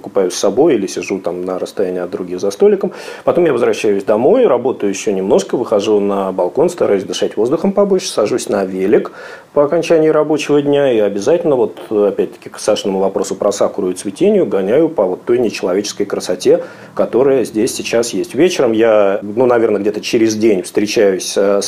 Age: 40-59